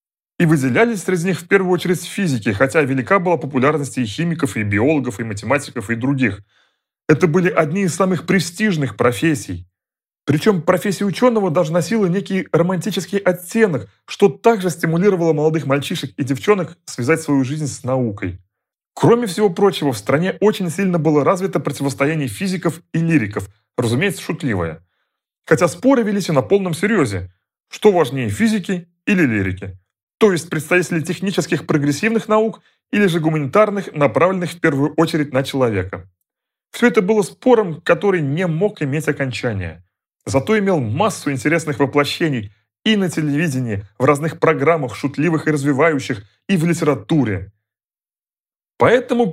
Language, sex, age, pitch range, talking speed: Russian, male, 30-49, 130-190 Hz, 140 wpm